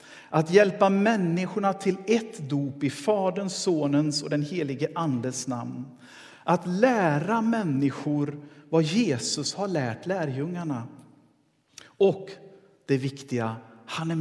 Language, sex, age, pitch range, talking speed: Swedish, male, 50-69, 145-200 Hz, 115 wpm